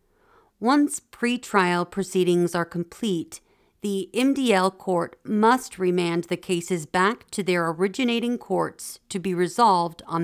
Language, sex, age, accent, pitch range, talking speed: English, female, 40-59, American, 175-215 Hz, 125 wpm